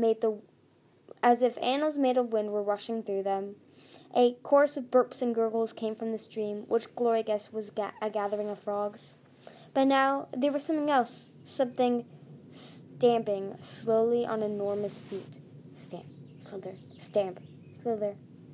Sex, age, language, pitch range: female, 10-29, English, 195-250 Hz